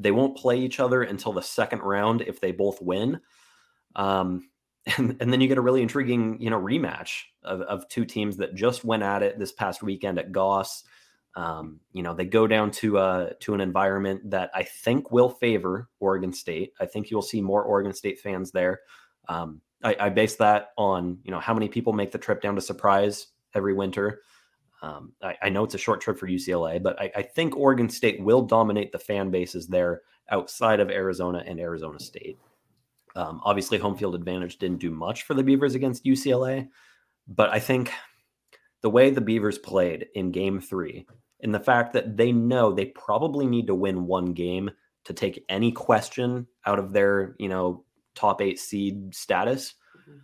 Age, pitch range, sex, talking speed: 30-49, 95-125 Hz, male, 195 wpm